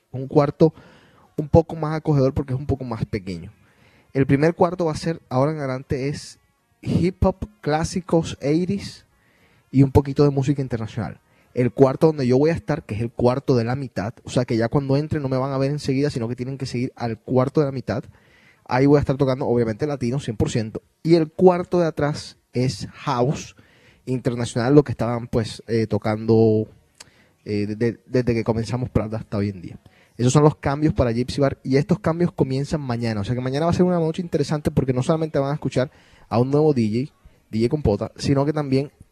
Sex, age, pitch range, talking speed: male, 20-39, 120-150 Hz, 210 wpm